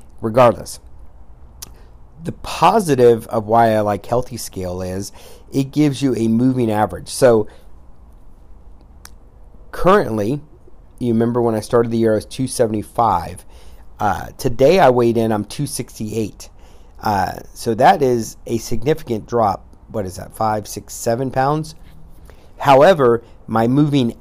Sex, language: male, English